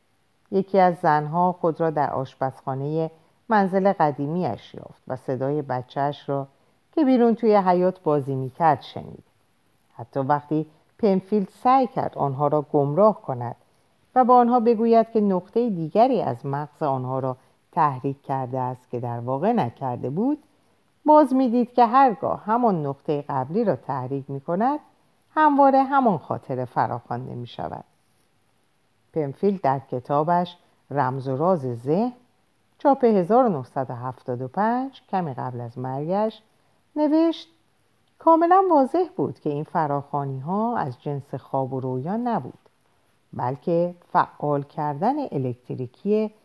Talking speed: 125 wpm